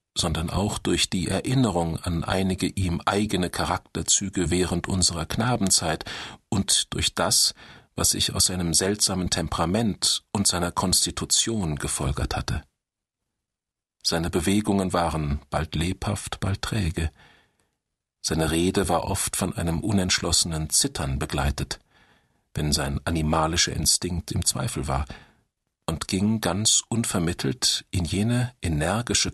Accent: German